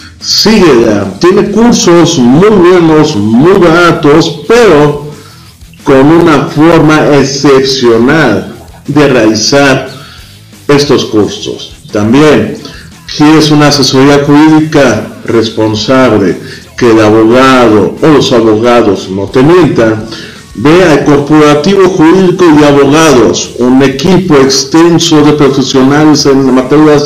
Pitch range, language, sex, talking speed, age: 130-170 Hz, Spanish, male, 100 wpm, 50-69